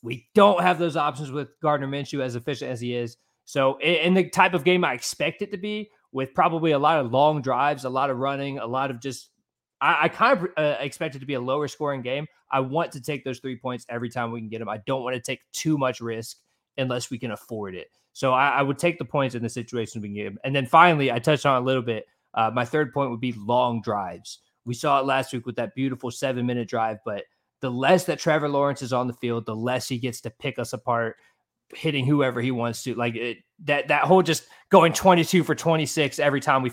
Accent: American